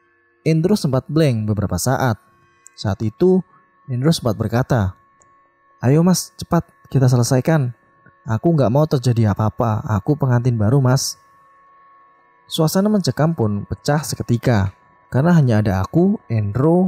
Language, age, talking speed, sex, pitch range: Indonesian, 20-39, 120 wpm, male, 105-150 Hz